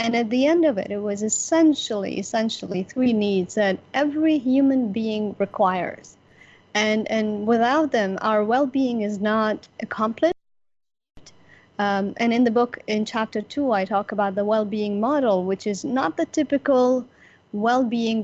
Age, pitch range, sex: 30-49, 205-245 Hz, female